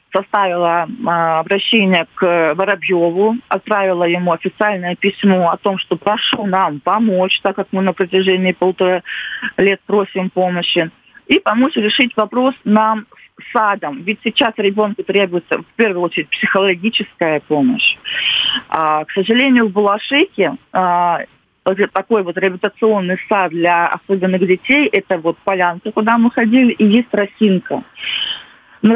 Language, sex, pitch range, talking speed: Russian, female, 185-220 Hz, 135 wpm